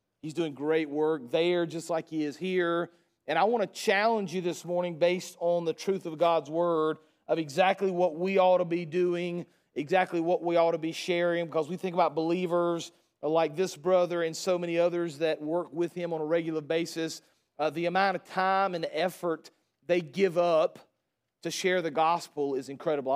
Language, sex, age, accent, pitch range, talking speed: English, male, 40-59, American, 165-185 Hz, 195 wpm